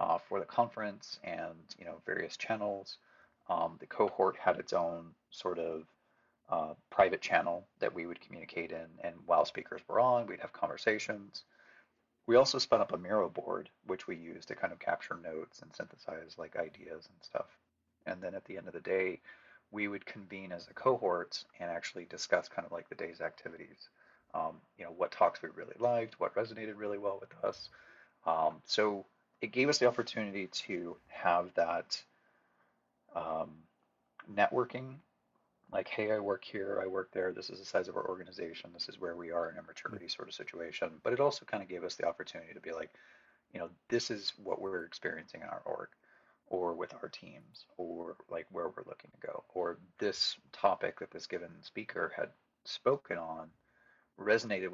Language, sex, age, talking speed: English, male, 30-49, 190 wpm